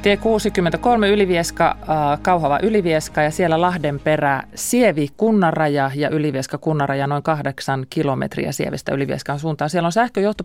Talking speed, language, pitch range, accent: 140 wpm, Finnish, 140-185 Hz, native